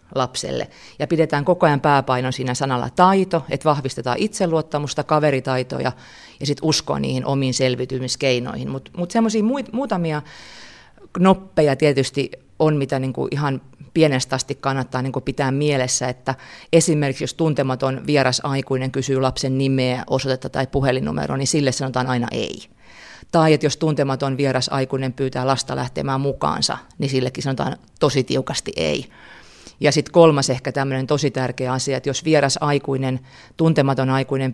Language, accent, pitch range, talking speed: Finnish, native, 130-155 Hz, 135 wpm